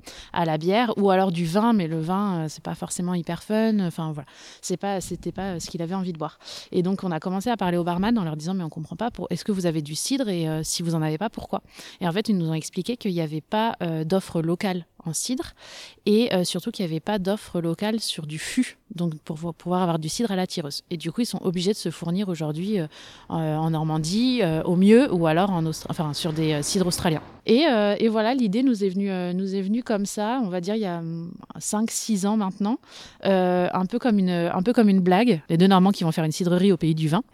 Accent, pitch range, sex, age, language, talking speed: French, 165-200 Hz, female, 20-39, French, 270 wpm